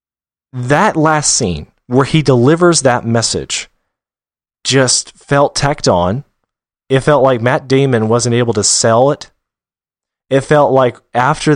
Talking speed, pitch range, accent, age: 135 wpm, 110-135 Hz, American, 30-49